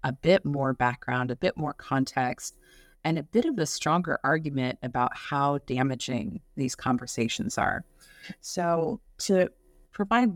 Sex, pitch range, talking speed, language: female, 130-170 Hz, 140 wpm, English